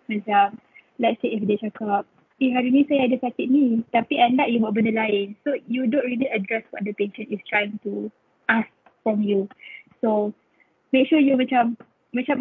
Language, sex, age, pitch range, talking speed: Malay, female, 10-29, 210-245 Hz, 195 wpm